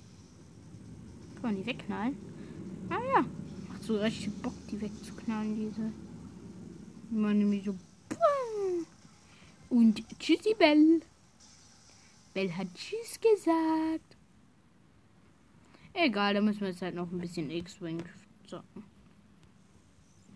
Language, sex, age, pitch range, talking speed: German, female, 20-39, 190-230 Hz, 95 wpm